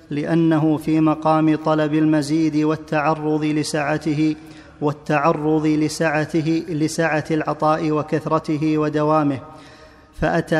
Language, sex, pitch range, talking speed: Arabic, male, 155-160 Hz, 70 wpm